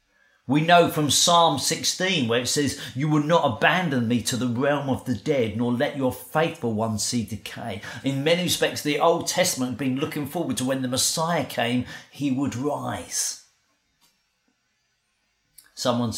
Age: 40-59